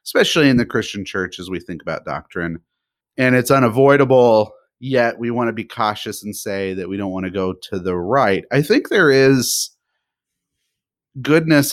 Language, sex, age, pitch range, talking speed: English, male, 30-49, 105-130 Hz, 180 wpm